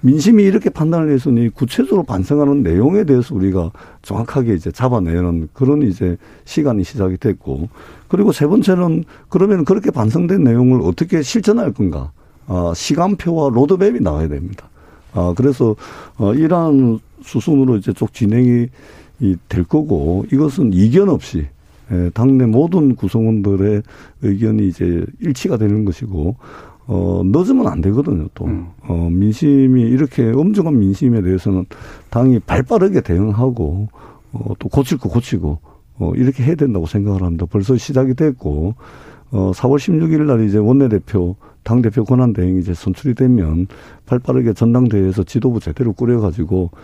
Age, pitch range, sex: 50-69, 95-140 Hz, male